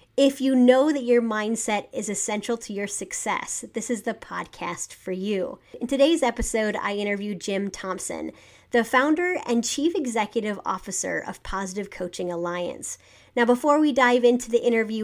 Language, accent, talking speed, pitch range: English, American, 165 wpm, 200-255 Hz